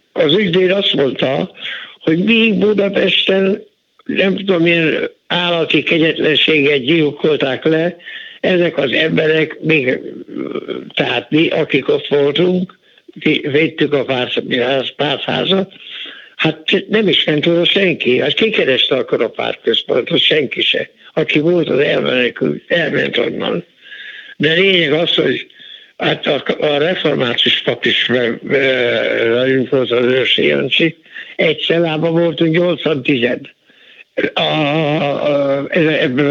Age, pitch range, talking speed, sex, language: 60-79, 150-200 Hz, 115 wpm, male, Hungarian